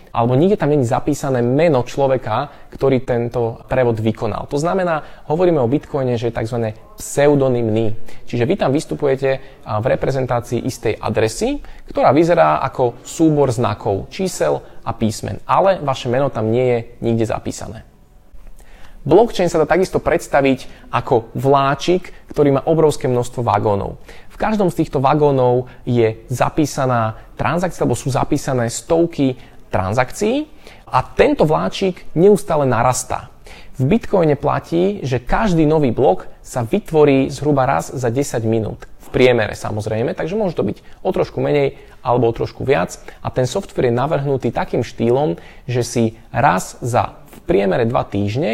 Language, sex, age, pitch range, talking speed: Slovak, male, 20-39, 120-150 Hz, 145 wpm